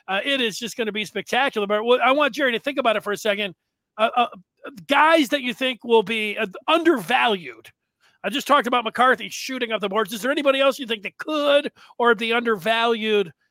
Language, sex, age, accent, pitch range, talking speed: English, male, 40-59, American, 210-260 Hz, 220 wpm